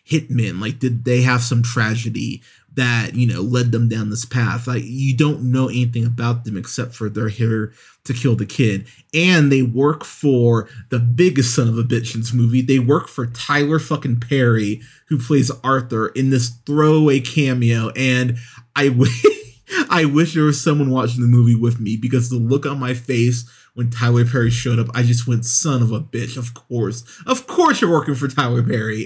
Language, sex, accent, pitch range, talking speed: English, male, American, 120-140 Hz, 200 wpm